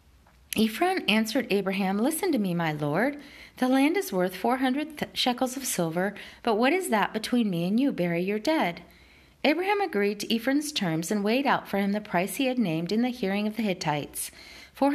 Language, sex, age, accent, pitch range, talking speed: English, female, 40-59, American, 180-270 Hz, 200 wpm